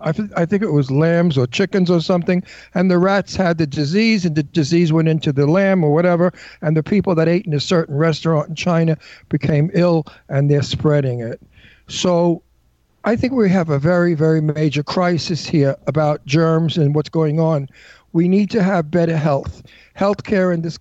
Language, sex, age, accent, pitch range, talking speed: English, male, 60-79, American, 150-180 Hz, 195 wpm